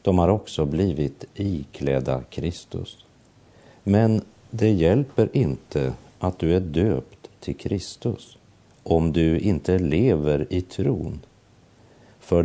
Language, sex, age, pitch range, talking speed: Swedish, male, 50-69, 80-105 Hz, 110 wpm